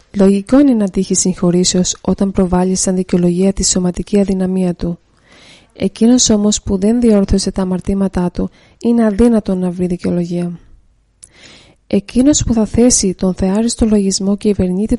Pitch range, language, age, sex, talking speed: 185-225 Hz, Greek, 20-39, female, 135 wpm